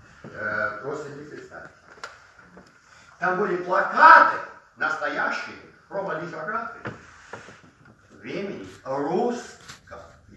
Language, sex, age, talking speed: Russian, male, 50-69, 60 wpm